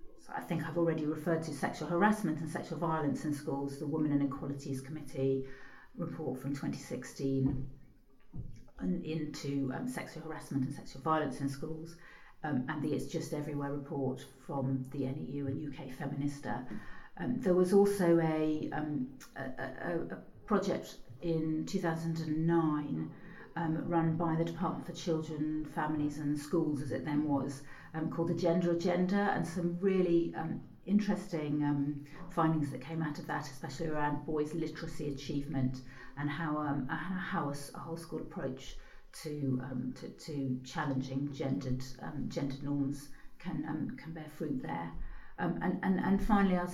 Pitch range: 140-165 Hz